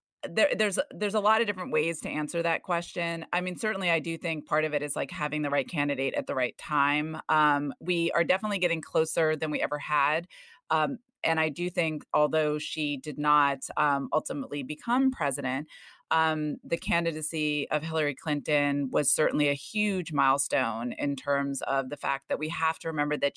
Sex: female